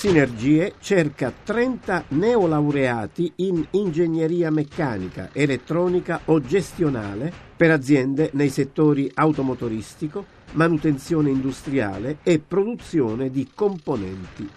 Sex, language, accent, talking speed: male, Italian, native, 85 wpm